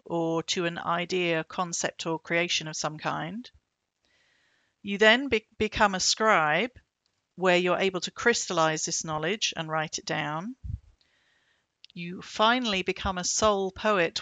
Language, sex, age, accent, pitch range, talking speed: English, female, 40-59, British, 170-215 Hz, 135 wpm